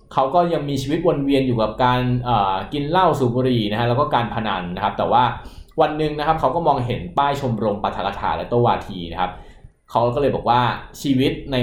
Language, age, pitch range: Thai, 20-39, 105-140 Hz